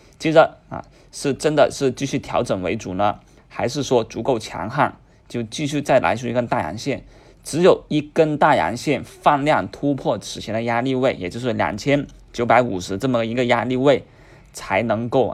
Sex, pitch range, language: male, 110-130 Hz, Chinese